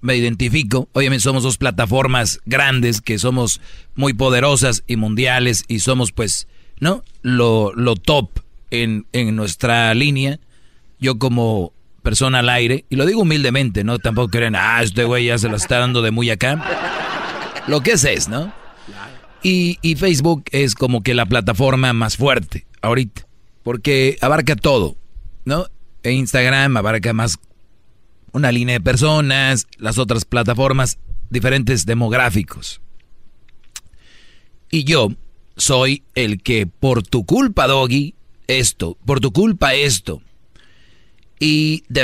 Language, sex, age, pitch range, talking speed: Spanish, male, 40-59, 110-135 Hz, 135 wpm